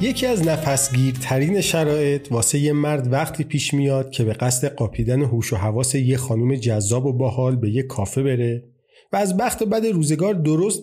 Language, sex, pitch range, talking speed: Persian, male, 120-160 Hz, 185 wpm